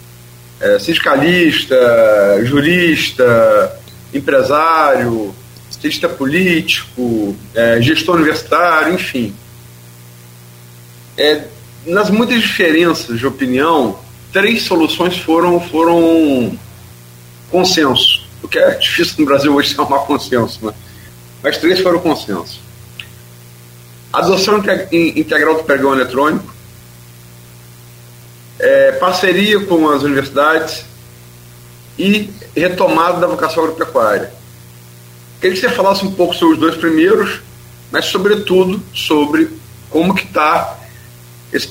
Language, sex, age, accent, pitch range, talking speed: Portuguese, male, 40-59, Brazilian, 100-170 Hz, 100 wpm